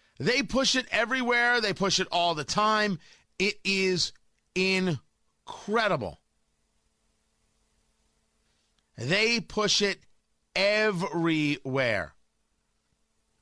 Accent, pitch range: American, 125-190 Hz